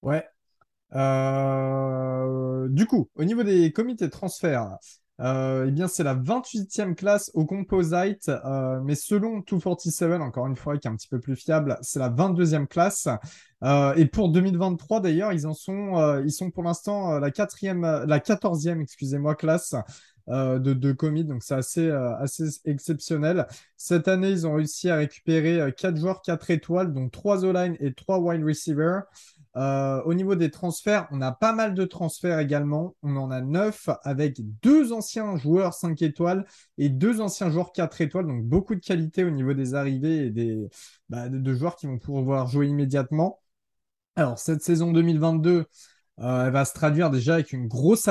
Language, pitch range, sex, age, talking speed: French, 135-180 Hz, male, 20-39, 180 wpm